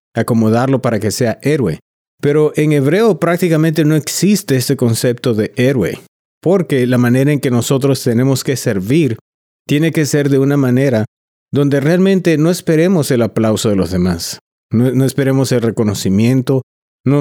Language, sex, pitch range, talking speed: English, male, 120-145 Hz, 155 wpm